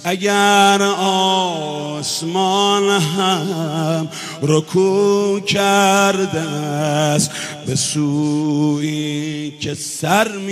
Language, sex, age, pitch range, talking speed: Persian, male, 50-69, 190-235 Hz, 55 wpm